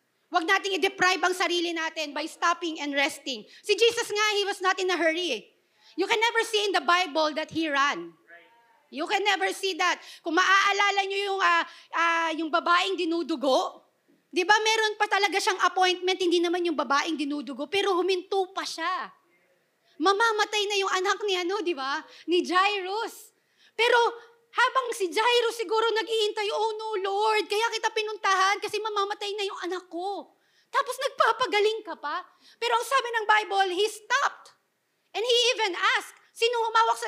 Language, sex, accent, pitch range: English, female, Filipino, 340-430 Hz